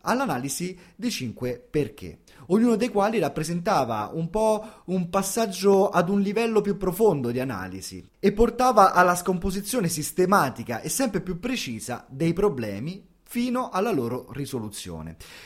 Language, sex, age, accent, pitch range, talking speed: Italian, male, 30-49, native, 125-195 Hz, 130 wpm